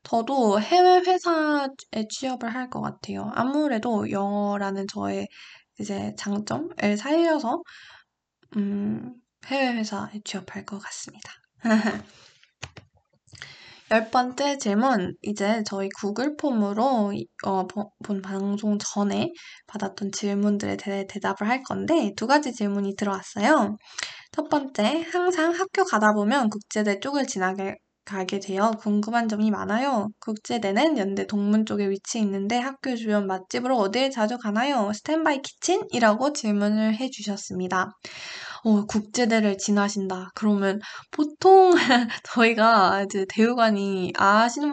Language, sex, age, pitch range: Korean, female, 10-29, 205-265 Hz